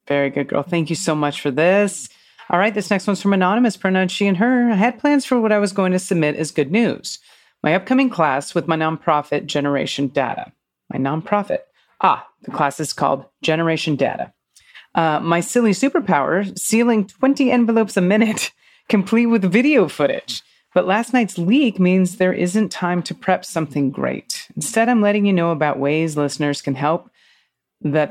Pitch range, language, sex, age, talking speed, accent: 150-190 Hz, English, female, 30-49, 185 wpm, American